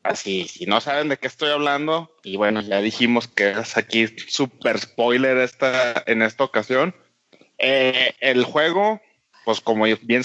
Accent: Mexican